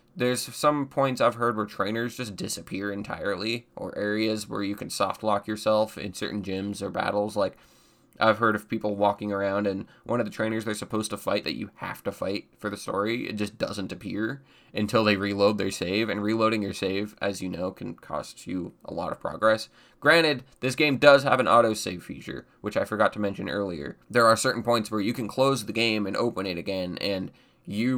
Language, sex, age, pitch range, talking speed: English, male, 20-39, 105-125 Hz, 210 wpm